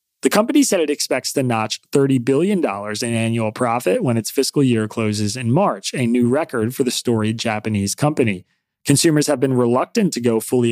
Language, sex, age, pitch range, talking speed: English, male, 30-49, 115-145 Hz, 190 wpm